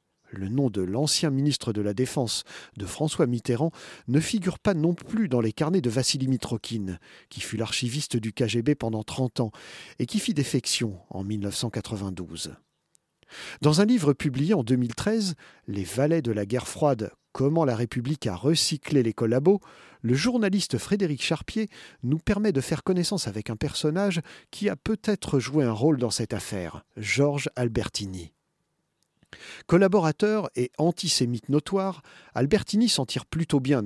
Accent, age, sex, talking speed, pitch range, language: French, 40-59, male, 155 wpm, 115-165 Hz, French